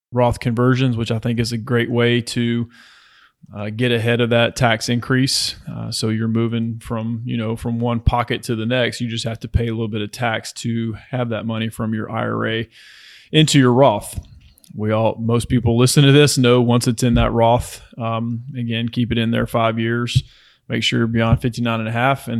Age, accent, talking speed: 20-39, American, 215 wpm